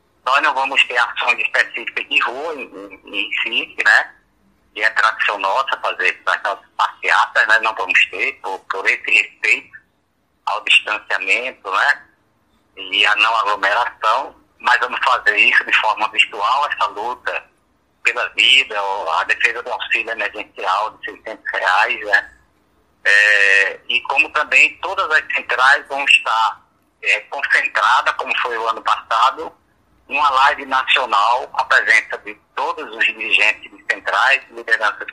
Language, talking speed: Portuguese, 140 wpm